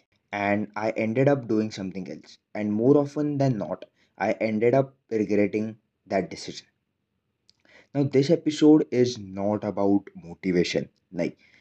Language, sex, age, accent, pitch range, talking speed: English, male, 20-39, Indian, 105-140 Hz, 135 wpm